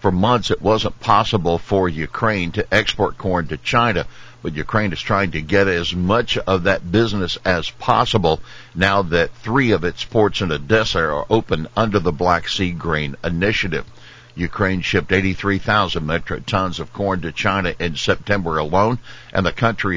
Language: English